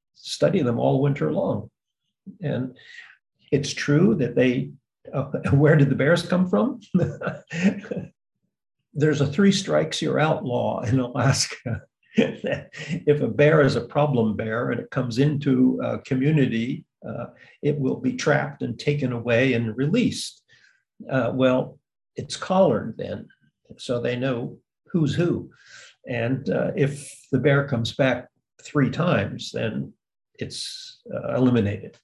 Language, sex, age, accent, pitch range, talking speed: English, male, 60-79, American, 130-160 Hz, 135 wpm